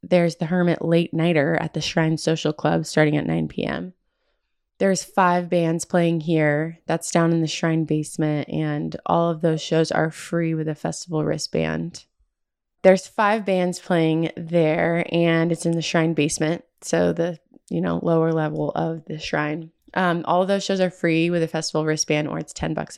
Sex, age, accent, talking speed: female, 20-39, American, 180 wpm